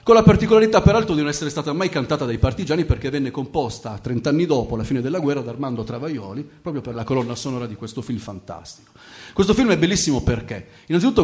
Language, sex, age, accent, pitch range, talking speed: Italian, male, 30-49, native, 120-150 Hz, 215 wpm